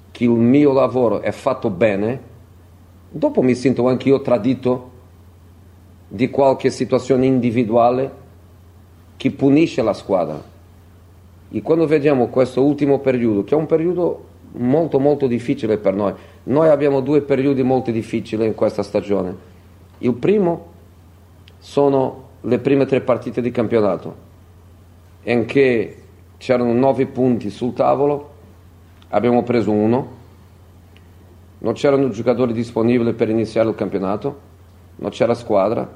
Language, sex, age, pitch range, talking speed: Italian, male, 40-59, 90-130 Hz, 125 wpm